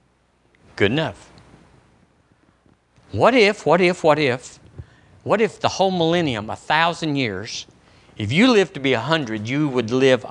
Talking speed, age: 150 wpm, 50-69